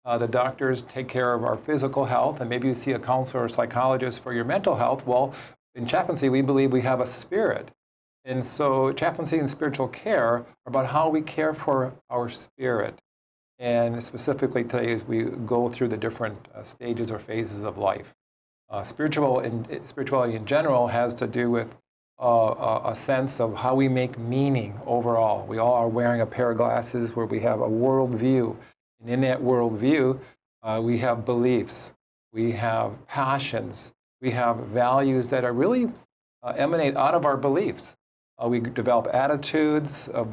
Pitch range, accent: 120-135 Hz, American